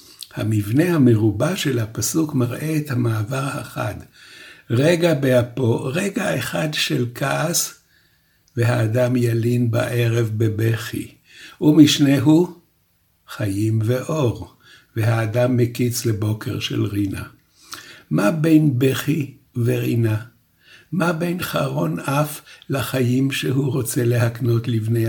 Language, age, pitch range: Hebrew, 60-79, 115-145 Hz